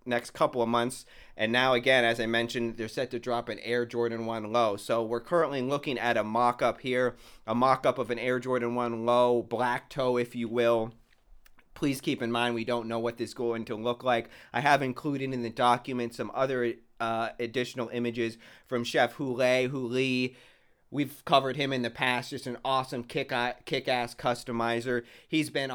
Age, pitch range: 30-49, 115-130 Hz